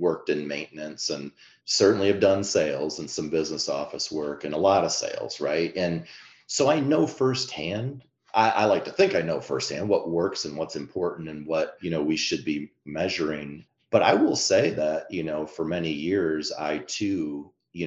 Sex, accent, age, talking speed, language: male, American, 30-49, 195 wpm, English